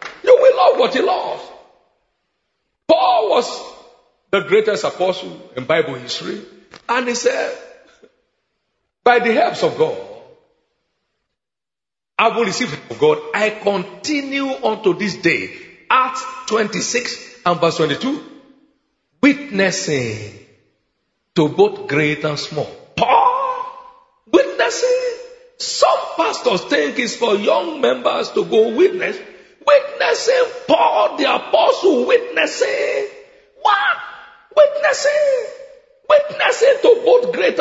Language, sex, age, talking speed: English, male, 50-69, 110 wpm